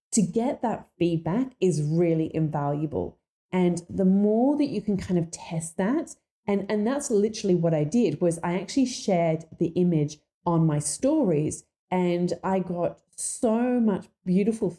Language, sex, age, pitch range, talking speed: English, female, 30-49, 160-210 Hz, 160 wpm